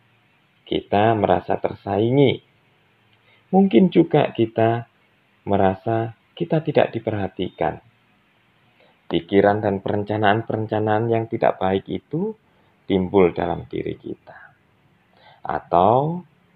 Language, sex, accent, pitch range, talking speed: Indonesian, male, native, 100-150 Hz, 80 wpm